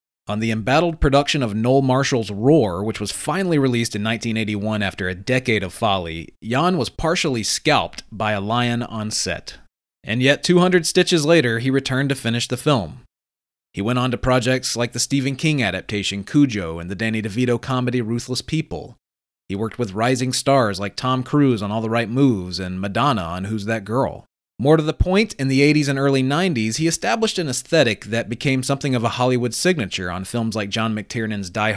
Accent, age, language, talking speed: American, 30-49, English, 195 wpm